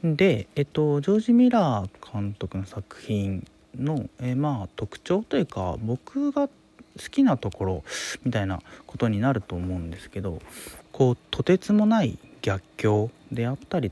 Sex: male